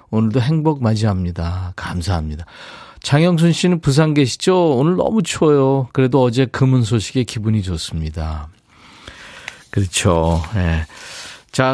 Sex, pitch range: male, 105-160 Hz